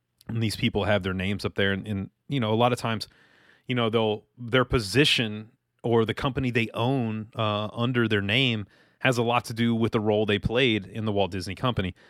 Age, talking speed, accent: 30-49, 225 wpm, American